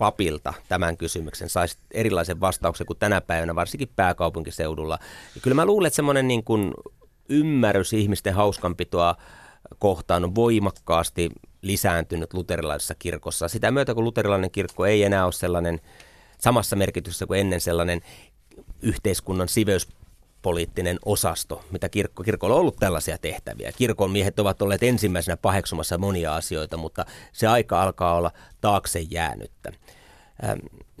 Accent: native